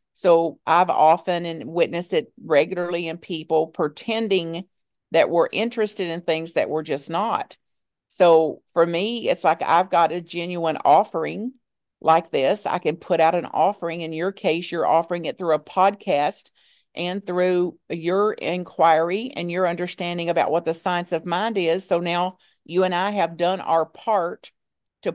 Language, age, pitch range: English, 50-69, 165-190 Hz